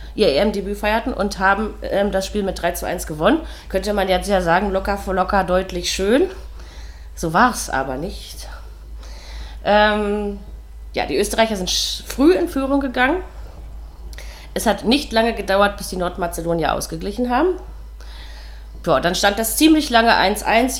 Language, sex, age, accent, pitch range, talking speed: German, female, 30-49, German, 165-225 Hz, 155 wpm